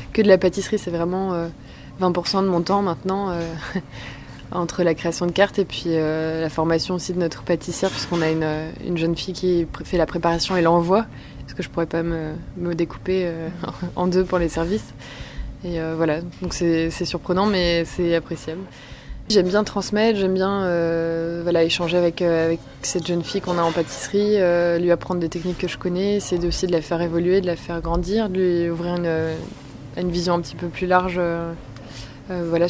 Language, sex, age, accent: French, female, 20-39, French